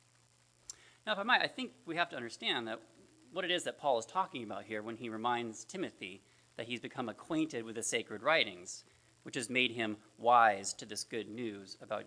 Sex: male